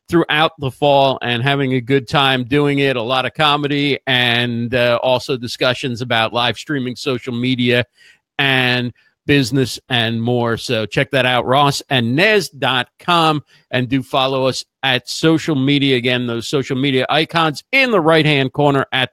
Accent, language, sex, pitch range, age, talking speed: American, English, male, 130-185 Hz, 50-69, 165 wpm